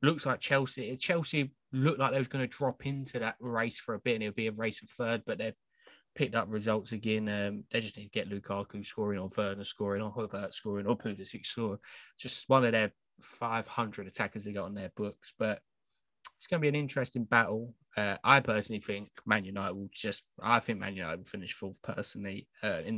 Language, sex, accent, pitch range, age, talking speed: English, male, British, 100-115 Hz, 20-39, 220 wpm